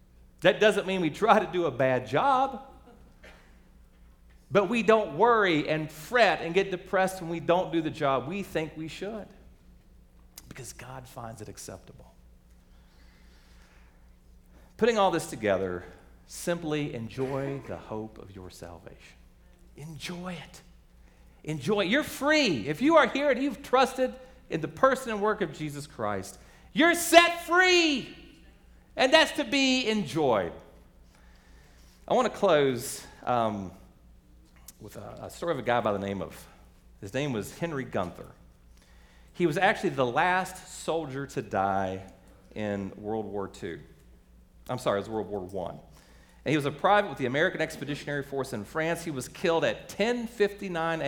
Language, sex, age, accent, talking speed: English, male, 40-59, American, 155 wpm